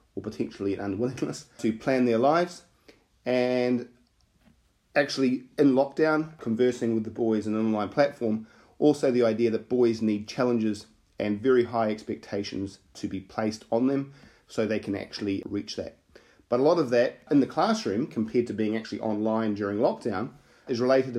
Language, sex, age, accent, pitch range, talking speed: English, male, 30-49, Australian, 110-130 Hz, 165 wpm